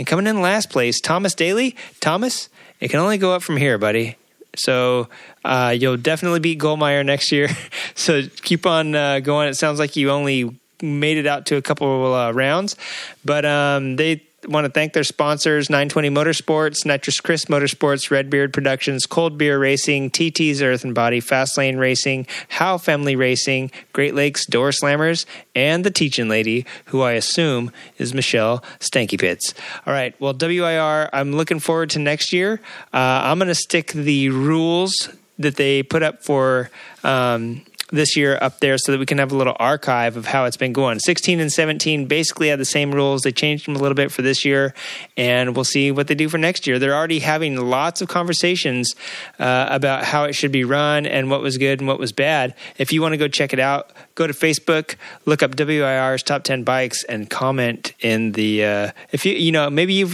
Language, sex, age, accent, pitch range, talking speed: English, male, 30-49, American, 130-155 Hz, 200 wpm